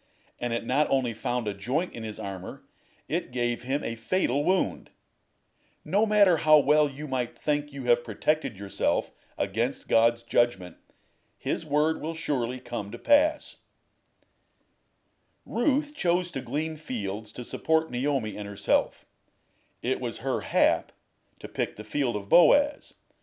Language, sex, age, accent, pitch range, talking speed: English, male, 50-69, American, 115-155 Hz, 145 wpm